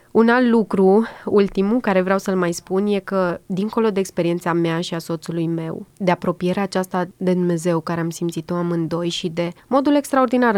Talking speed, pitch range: 180 wpm, 180-235 Hz